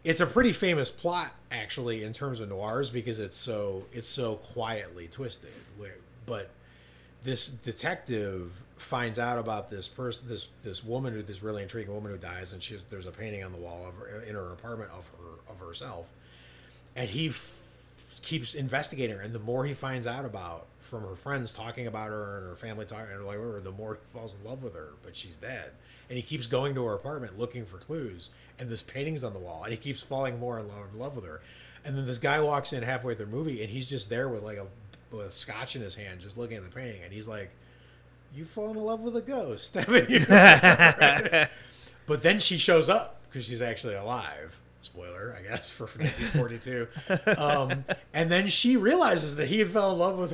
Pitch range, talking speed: 105-155 Hz, 210 wpm